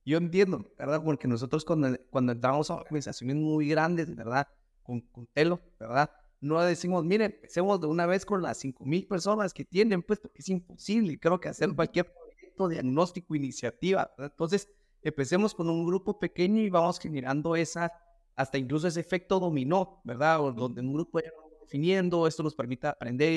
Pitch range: 140-175 Hz